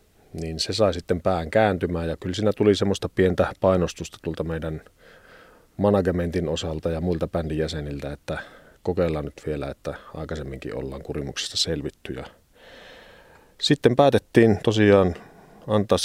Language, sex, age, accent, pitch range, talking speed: Finnish, male, 40-59, native, 80-95 Hz, 130 wpm